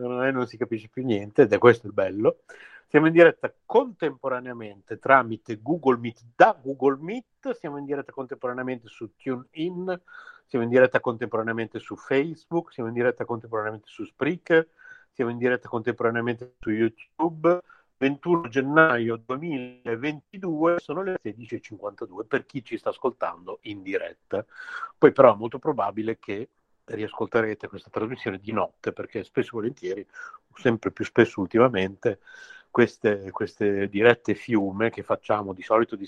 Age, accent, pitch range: 50-69, native, 115-185 Hz